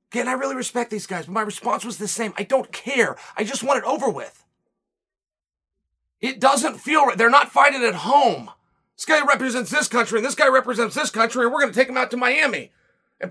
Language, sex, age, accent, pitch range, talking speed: English, male, 30-49, American, 205-280 Hz, 235 wpm